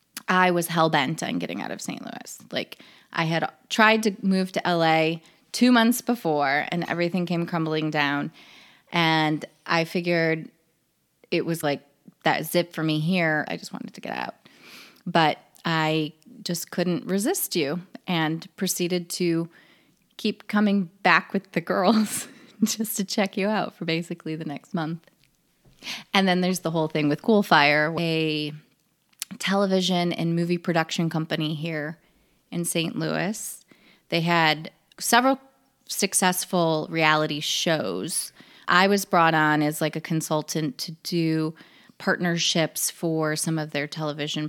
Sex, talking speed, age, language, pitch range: female, 145 wpm, 20-39, English, 155-190 Hz